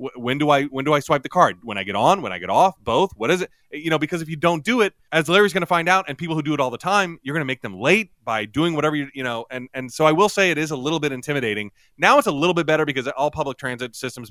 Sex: male